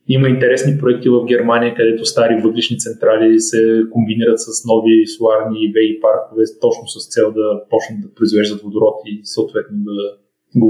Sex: male